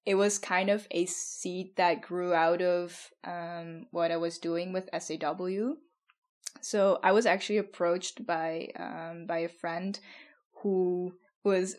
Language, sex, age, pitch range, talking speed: English, female, 10-29, 170-195 Hz, 150 wpm